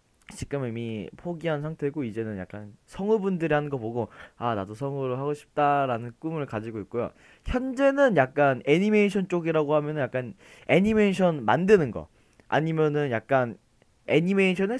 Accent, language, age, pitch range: native, Korean, 20-39, 125-175 Hz